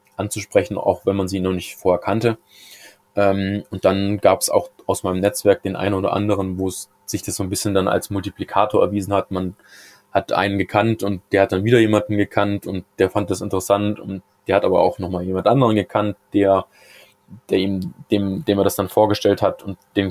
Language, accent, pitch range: German, German, 95-105 Hz